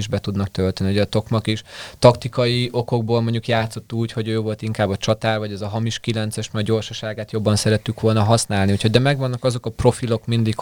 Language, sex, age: Hungarian, male, 20-39